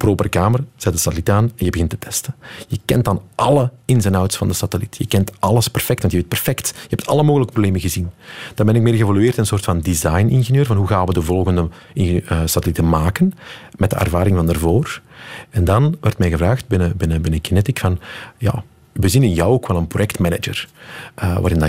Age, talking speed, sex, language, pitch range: 40-59, 210 wpm, male, Dutch, 90-130 Hz